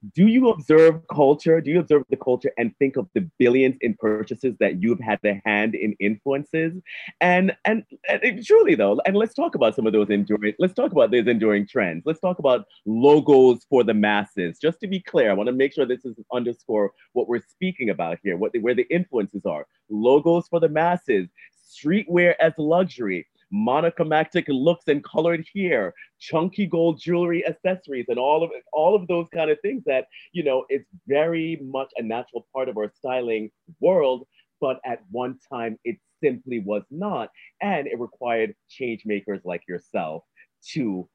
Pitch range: 110-175 Hz